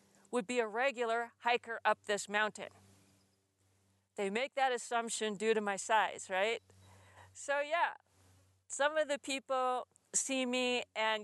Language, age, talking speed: English, 40-59, 140 wpm